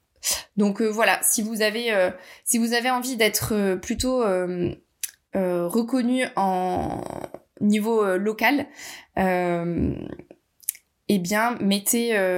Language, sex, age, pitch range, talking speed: French, female, 20-39, 200-255 Hz, 95 wpm